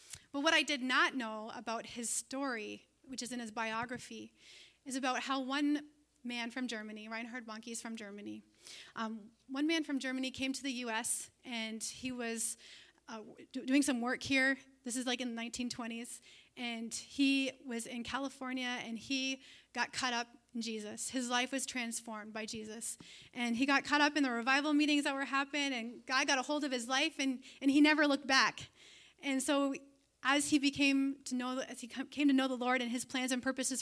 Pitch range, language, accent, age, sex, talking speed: 240-280 Hz, English, American, 30-49, female, 200 wpm